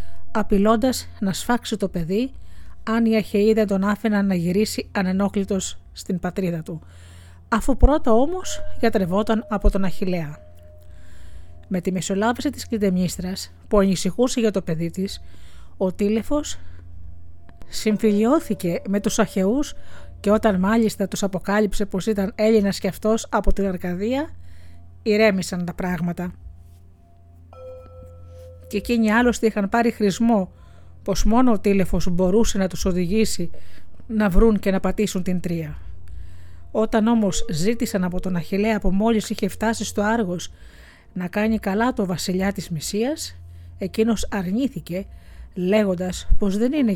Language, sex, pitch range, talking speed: Greek, female, 160-220 Hz, 130 wpm